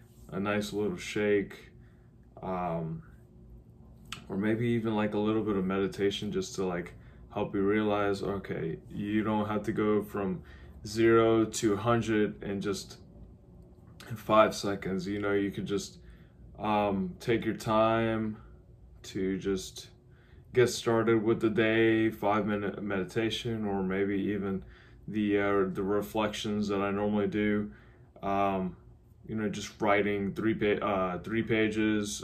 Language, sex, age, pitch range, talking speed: English, male, 20-39, 95-110 Hz, 140 wpm